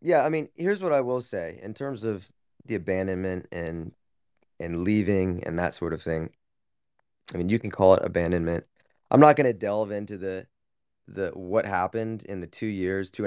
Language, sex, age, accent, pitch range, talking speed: English, male, 20-39, American, 90-110 Hz, 195 wpm